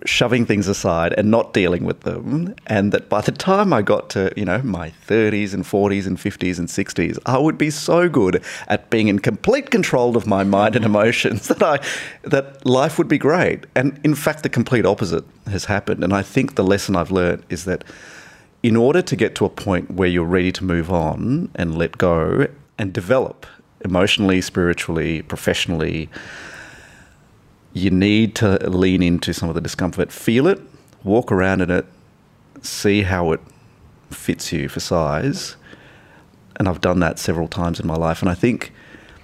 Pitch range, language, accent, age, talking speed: 85-110 Hz, English, Australian, 30-49, 185 wpm